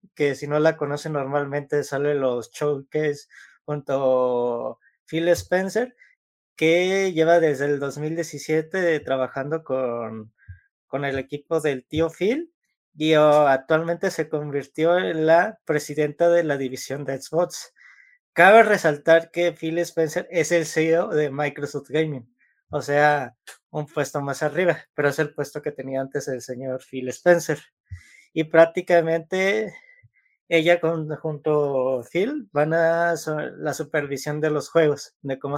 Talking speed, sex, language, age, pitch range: 135 wpm, male, Spanish, 20-39, 140-170 Hz